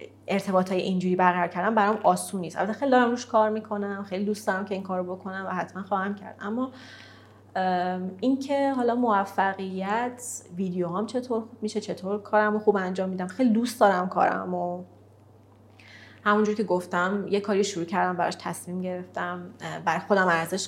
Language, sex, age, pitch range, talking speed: Persian, female, 30-49, 175-205 Hz, 170 wpm